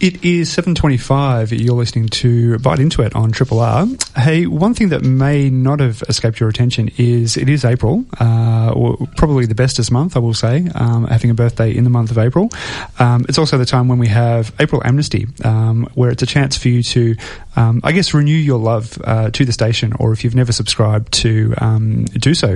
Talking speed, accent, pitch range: 215 wpm, Australian, 115-135 Hz